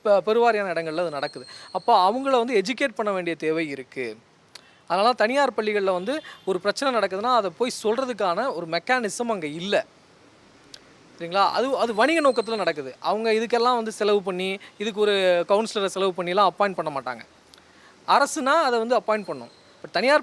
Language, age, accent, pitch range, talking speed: Tamil, 20-39, native, 160-220 Hz, 155 wpm